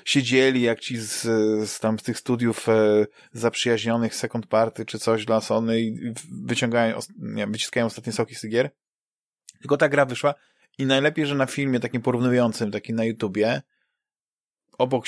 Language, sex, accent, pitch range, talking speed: Polish, male, native, 110-135 Hz, 145 wpm